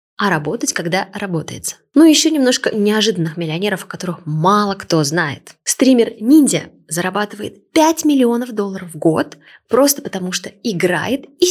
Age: 20-39